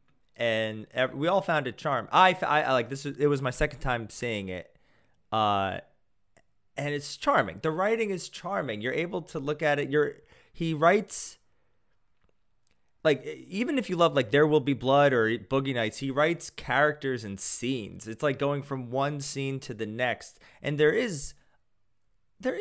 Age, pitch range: 30-49, 115-165 Hz